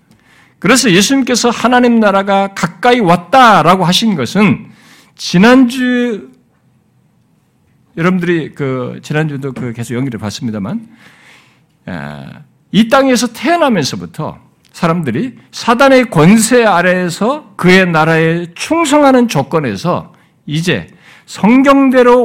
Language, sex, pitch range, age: Korean, male, 180-245 Hz, 60-79